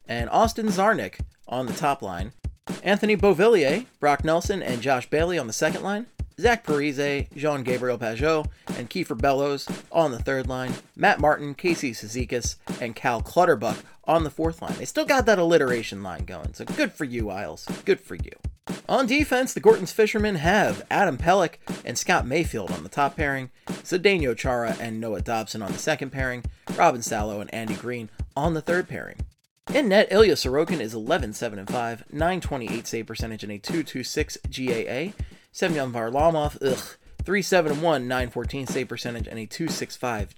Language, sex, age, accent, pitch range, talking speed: English, male, 30-49, American, 120-195 Hz, 165 wpm